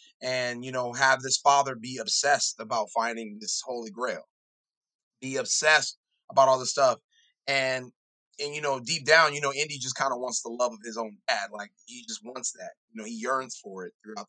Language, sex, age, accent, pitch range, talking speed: English, male, 30-49, American, 120-175 Hz, 210 wpm